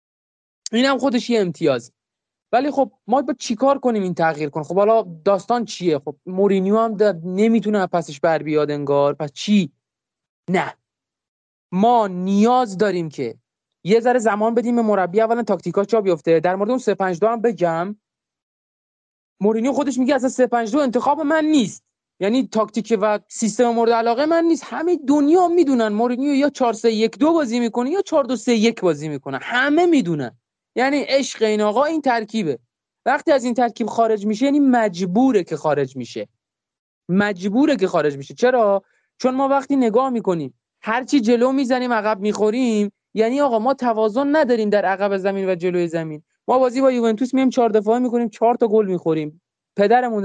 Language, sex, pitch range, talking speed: Persian, male, 185-250 Hz, 155 wpm